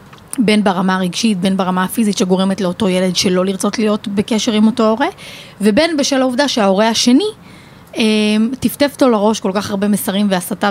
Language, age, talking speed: Hebrew, 30-49, 170 wpm